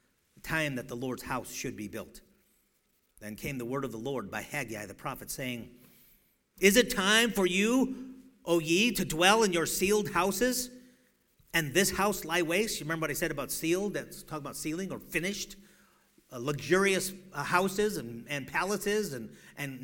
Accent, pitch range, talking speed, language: American, 145-210 Hz, 180 wpm, English